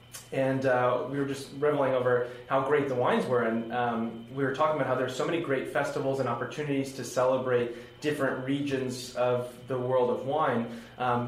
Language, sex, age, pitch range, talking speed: English, male, 20-39, 125-140 Hz, 190 wpm